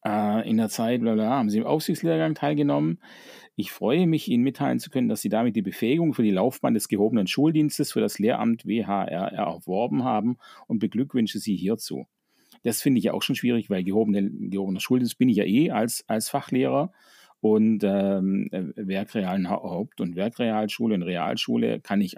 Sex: male